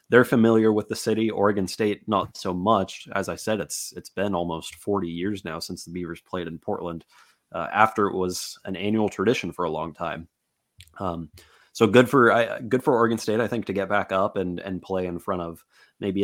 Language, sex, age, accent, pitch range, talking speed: English, male, 30-49, American, 90-110 Hz, 220 wpm